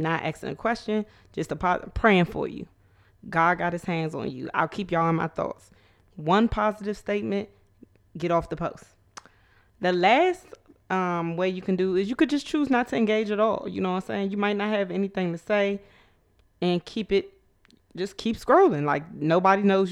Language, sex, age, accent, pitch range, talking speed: English, female, 20-39, American, 165-200 Hz, 195 wpm